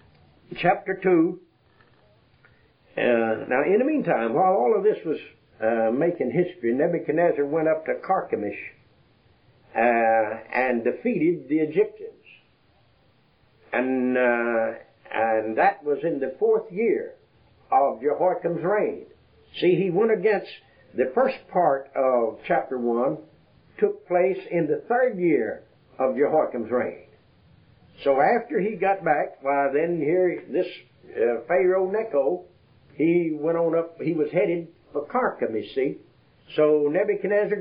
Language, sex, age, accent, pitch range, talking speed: English, male, 60-79, American, 125-190 Hz, 130 wpm